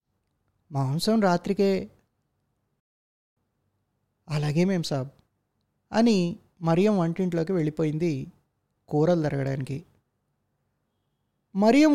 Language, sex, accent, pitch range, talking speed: Telugu, male, native, 145-210 Hz, 60 wpm